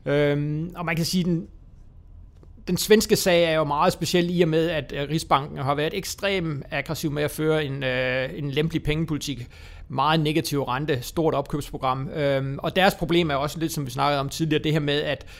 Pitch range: 135-155 Hz